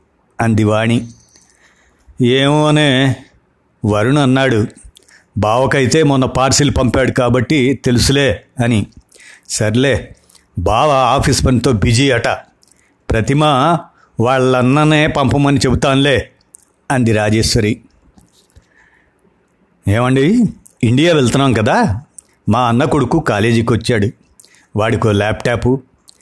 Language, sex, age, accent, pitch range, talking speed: Telugu, male, 60-79, native, 110-140 Hz, 80 wpm